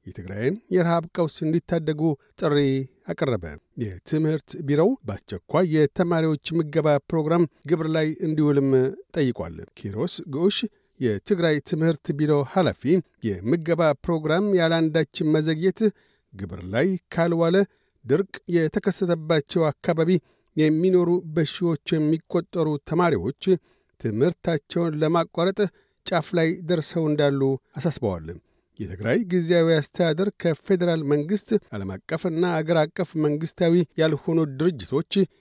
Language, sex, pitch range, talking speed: Amharic, male, 150-175 Hz, 90 wpm